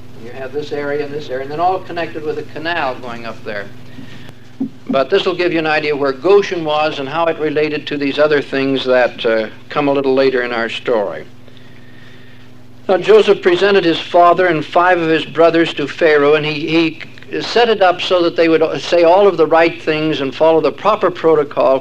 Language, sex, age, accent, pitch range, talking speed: English, male, 60-79, American, 125-160 Hz, 215 wpm